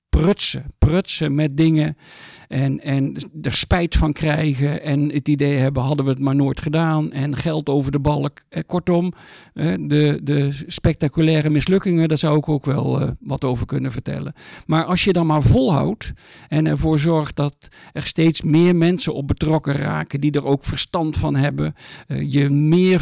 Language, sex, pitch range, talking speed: Dutch, male, 140-165 Hz, 165 wpm